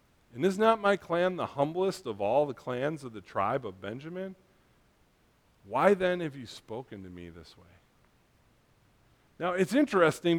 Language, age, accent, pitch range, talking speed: English, 40-59, American, 115-190 Hz, 160 wpm